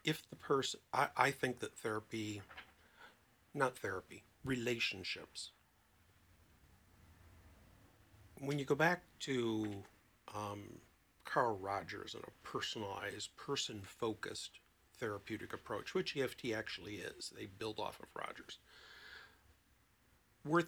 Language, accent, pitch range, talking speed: English, American, 105-135 Hz, 105 wpm